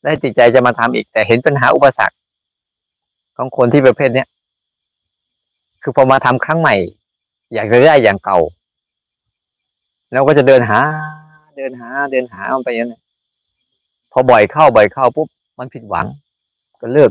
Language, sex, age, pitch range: Thai, male, 20-39, 110-145 Hz